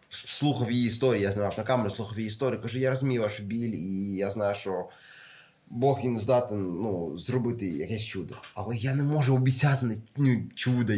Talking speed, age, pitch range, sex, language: 175 wpm, 20-39, 105-145 Hz, male, Ukrainian